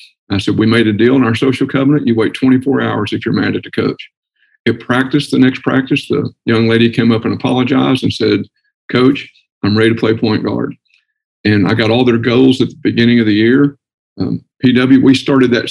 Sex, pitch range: male, 115-135 Hz